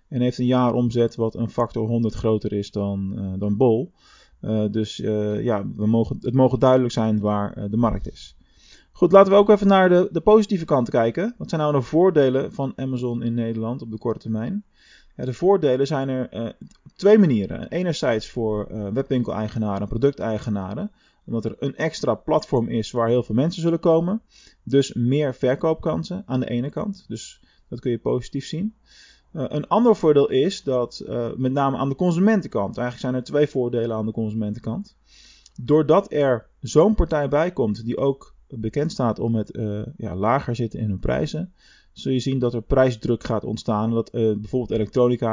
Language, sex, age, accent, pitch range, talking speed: Dutch, male, 20-39, Dutch, 110-150 Hz, 190 wpm